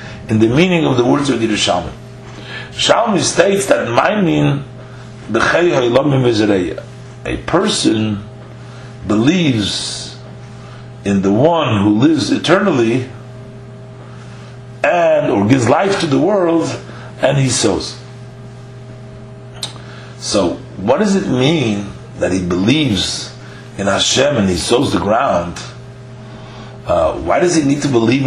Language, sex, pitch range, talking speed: English, male, 115-135 Hz, 120 wpm